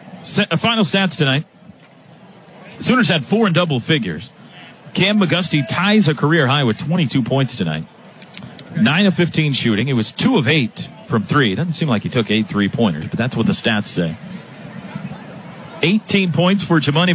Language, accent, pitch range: English, American, 125-175 Hz